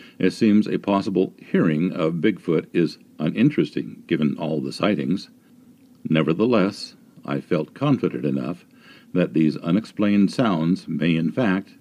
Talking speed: 125 wpm